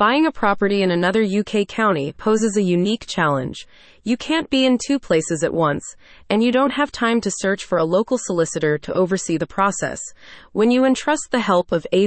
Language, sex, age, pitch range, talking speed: English, female, 20-39, 170-230 Hz, 205 wpm